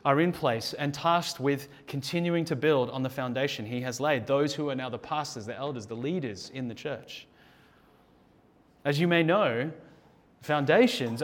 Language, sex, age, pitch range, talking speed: English, male, 30-49, 135-170 Hz, 175 wpm